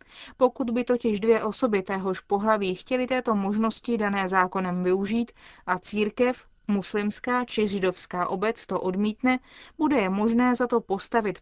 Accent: native